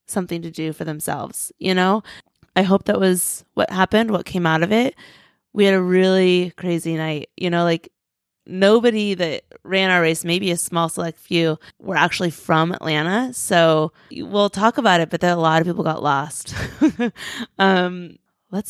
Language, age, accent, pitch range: English, 20-39, American, 170-215 Hz